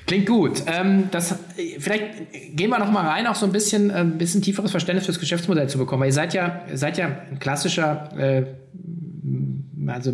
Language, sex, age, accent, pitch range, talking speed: German, male, 20-39, German, 135-165 Hz, 195 wpm